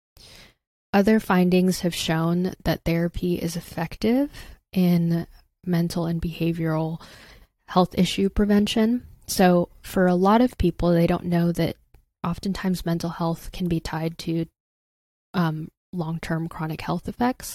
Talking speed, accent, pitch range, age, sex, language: 130 wpm, American, 165-185 Hz, 10-29, female, English